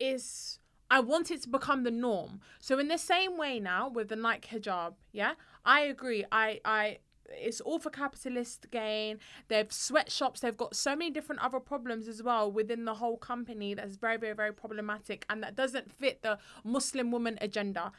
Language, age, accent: English, 20-39, British